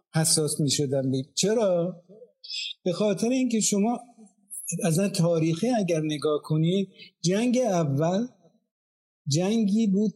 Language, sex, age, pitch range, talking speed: Persian, male, 50-69, 155-195 Hz, 105 wpm